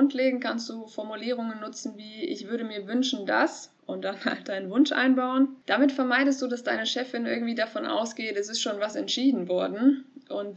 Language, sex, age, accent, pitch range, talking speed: German, female, 20-39, German, 205-260 Hz, 185 wpm